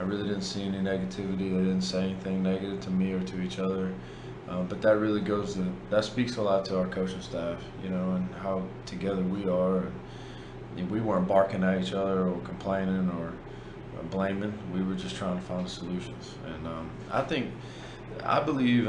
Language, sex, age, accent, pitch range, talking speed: English, male, 20-39, American, 95-105 Hz, 195 wpm